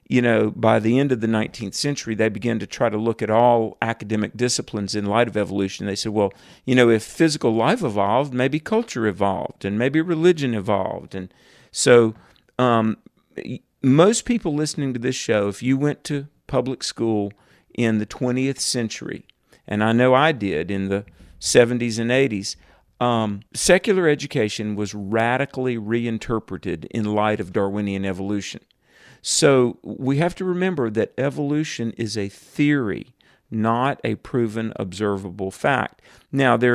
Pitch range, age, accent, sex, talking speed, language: 105-130 Hz, 50-69, American, male, 155 wpm, English